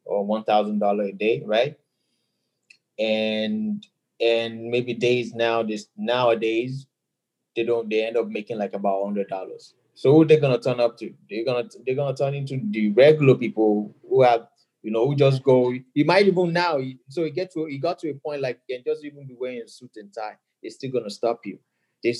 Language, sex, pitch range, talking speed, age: English, male, 115-150 Hz, 195 wpm, 20-39